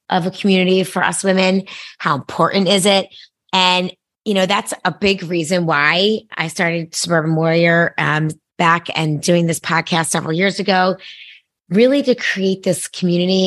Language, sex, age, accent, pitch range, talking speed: English, female, 30-49, American, 155-195 Hz, 160 wpm